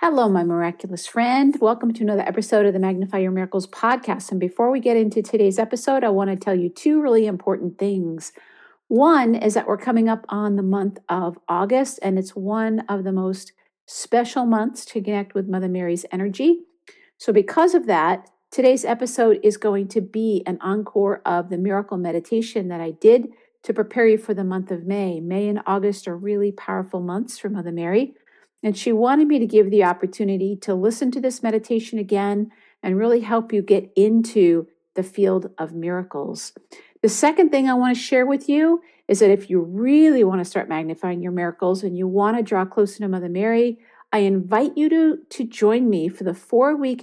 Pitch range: 190-235 Hz